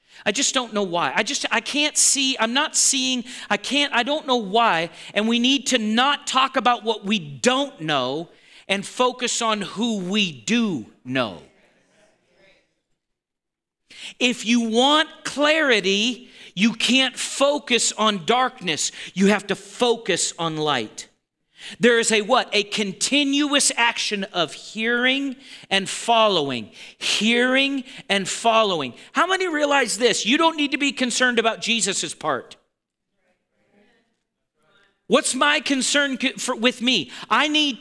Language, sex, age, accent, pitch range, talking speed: English, male, 40-59, American, 205-265 Hz, 140 wpm